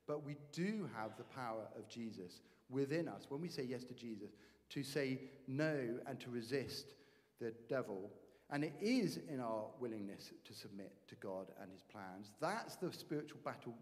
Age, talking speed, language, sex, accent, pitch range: 50-69, 180 wpm, English, male, British, 115-160 Hz